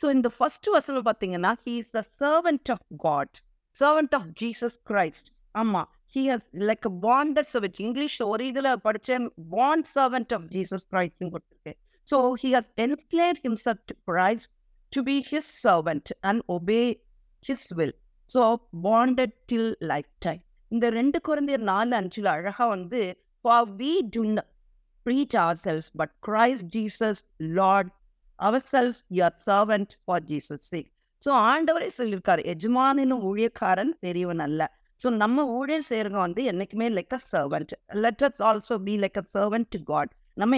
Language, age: Tamil, 50-69